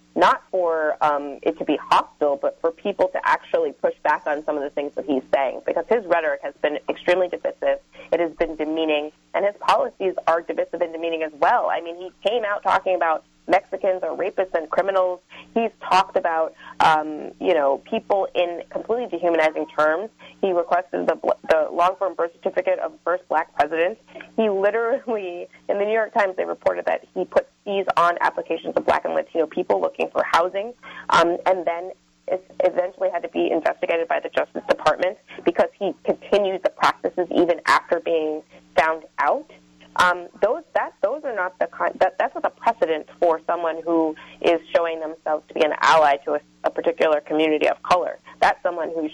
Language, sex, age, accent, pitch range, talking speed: English, female, 20-39, American, 155-190 Hz, 190 wpm